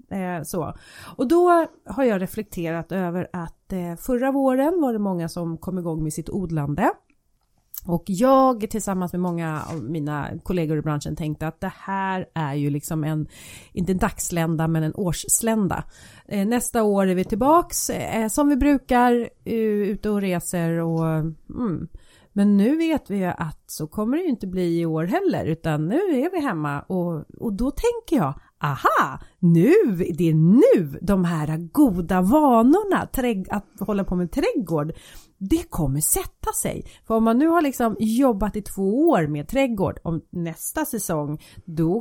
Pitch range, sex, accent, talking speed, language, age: 160-230 Hz, female, native, 165 wpm, Swedish, 30-49